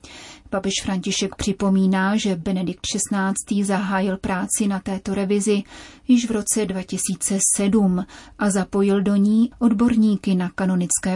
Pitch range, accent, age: 190-215 Hz, native, 30-49